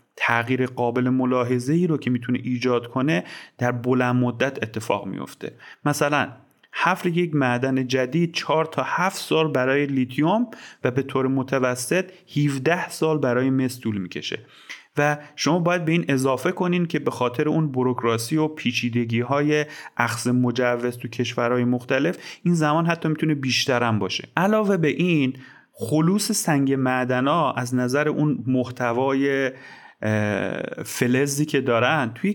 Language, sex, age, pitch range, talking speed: Persian, male, 30-49, 125-155 Hz, 135 wpm